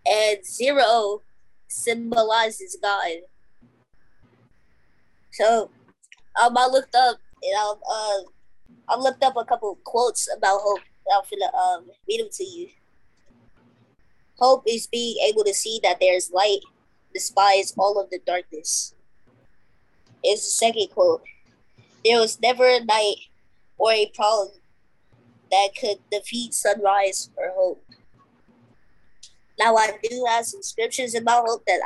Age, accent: 20-39, American